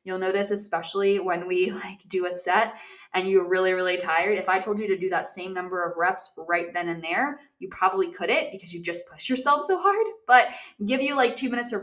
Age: 20-39